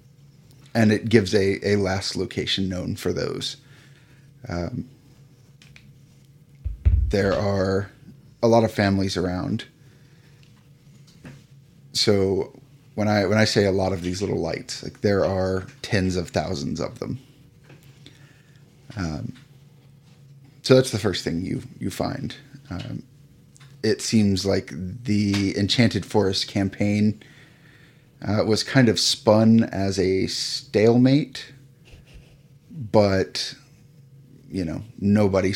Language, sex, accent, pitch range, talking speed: English, male, American, 100-140 Hz, 115 wpm